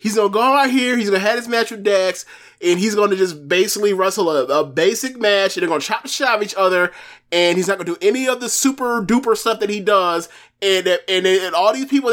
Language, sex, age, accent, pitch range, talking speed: English, male, 20-39, American, 190-255 Hz, 250 wpm